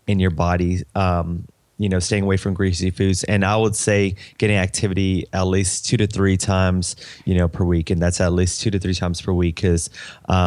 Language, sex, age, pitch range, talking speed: English, male, 20-39, 90-100 Hz, 220 wpm